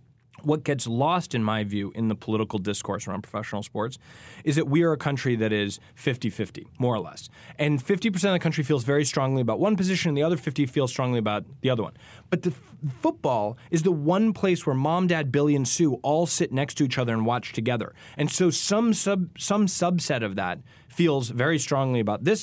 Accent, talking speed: American, 220 wpm